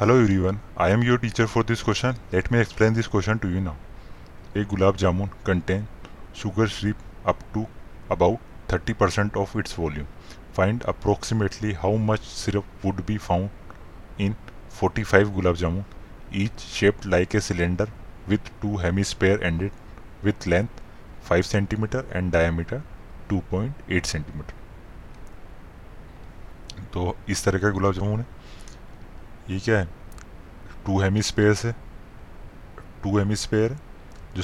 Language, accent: Hindi, native